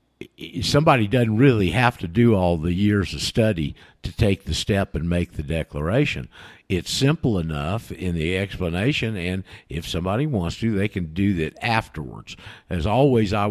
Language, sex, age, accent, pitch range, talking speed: English, male, 50-69, American, 90-120 Hz, 170 wpm